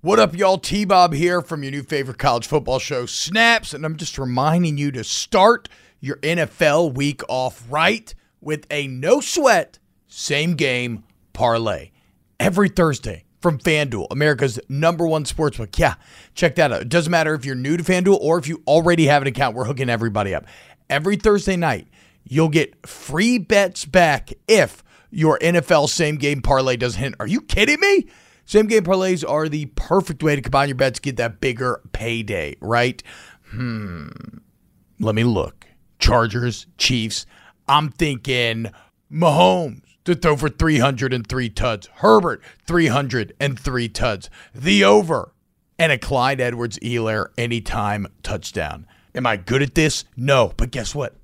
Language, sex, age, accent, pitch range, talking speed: English, male, 40-59, American, 115-165 Hz, 155 wpm